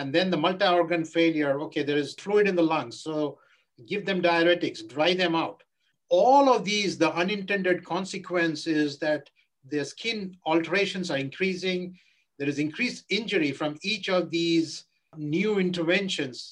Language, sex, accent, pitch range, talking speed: English, male, Indian, 150-180 Hz, 150 wpm